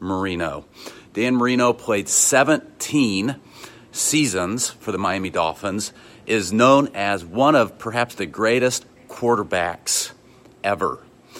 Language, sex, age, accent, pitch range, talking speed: English, male, 40-59, American, 105-140 Hz, 105 wpm